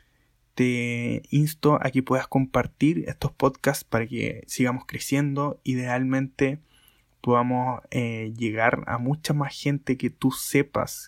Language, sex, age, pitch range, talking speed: Spanish, male, 20-39, 120-130 Hz, 125 wpm